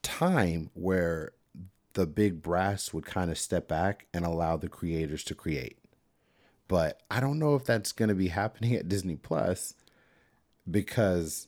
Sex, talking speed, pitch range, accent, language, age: male, 155 wpm, 80-100 Hz, American, English, 30-49